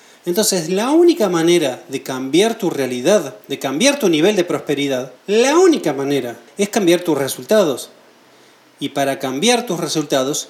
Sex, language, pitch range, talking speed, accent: male, Spanish, 140-210 Hz, 150 wpm, Argentinian